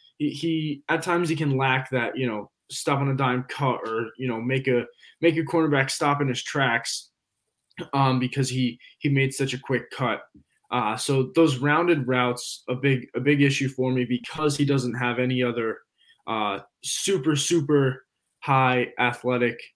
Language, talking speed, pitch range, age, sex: English, 175 wpm, 125-145 Hz, 20-39, male